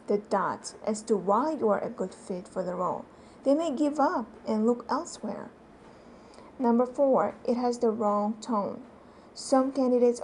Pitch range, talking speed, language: 210-265 Hz, 170 wpm, English